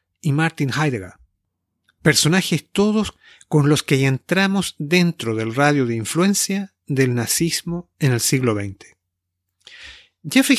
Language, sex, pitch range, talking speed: Spanish, male, 120-170 Hz, 120 wpm